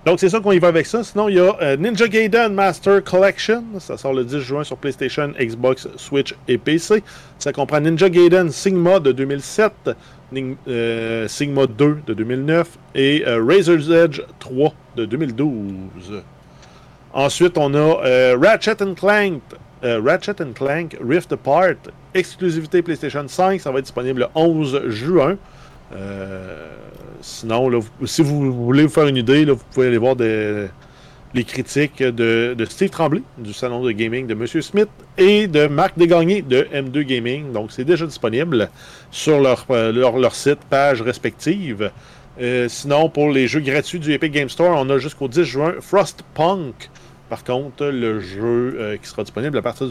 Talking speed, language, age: 170 wpm, French, 40-59